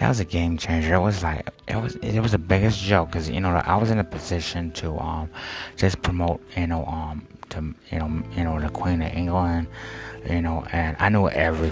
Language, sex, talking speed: English, male, 225 wpm